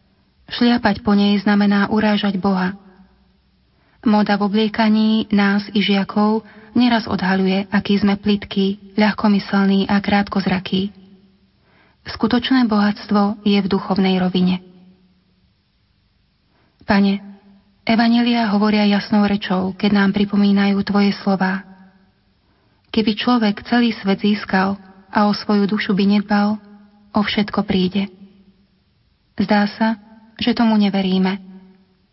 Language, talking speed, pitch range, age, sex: Slovak, 105 wpm, 195-210 Hz, 30-49, female